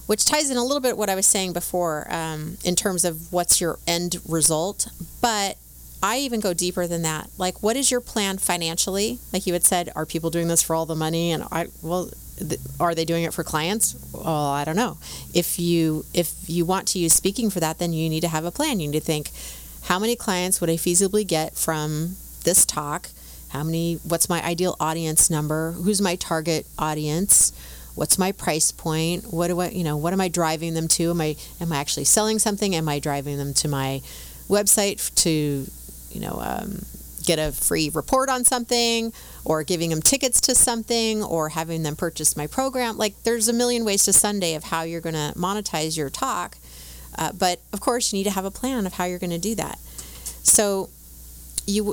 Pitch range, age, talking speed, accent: 155-200 Hz, 30-49, 215 wpm, American